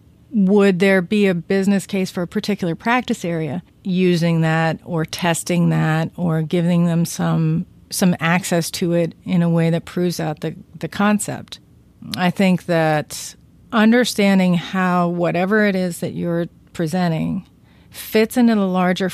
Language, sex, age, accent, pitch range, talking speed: English, female, 40-59, American, 160-190 Hz, 150 wpm